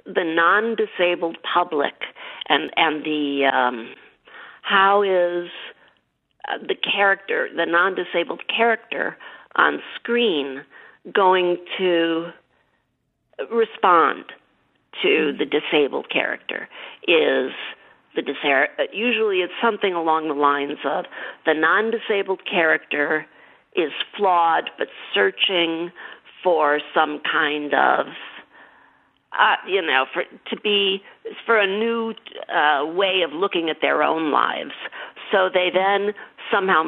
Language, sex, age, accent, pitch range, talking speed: English, female, 50-69, American, 170-230 Hz, 105 wpm